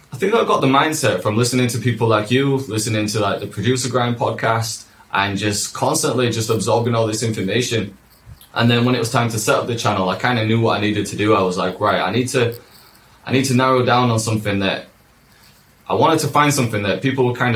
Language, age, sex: English, 20-39, male